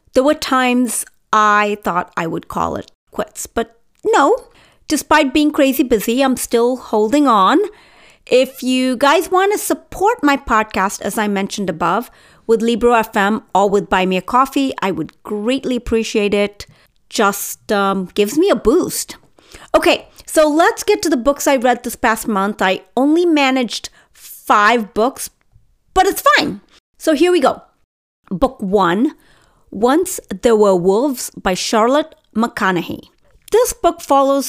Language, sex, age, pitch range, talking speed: English, female, 40-59, 210-290 Hz, 150 wpm